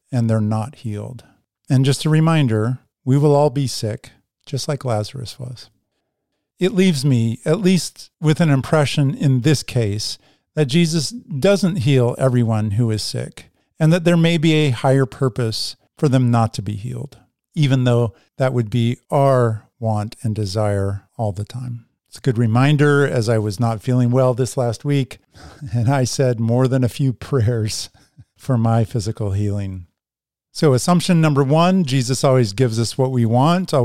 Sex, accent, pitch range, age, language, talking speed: male, American, 115-150 Hz, 50-69, English, 175 wpm